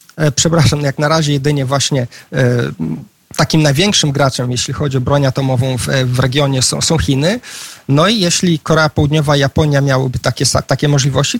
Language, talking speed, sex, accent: Polish, 165 wpm, male, native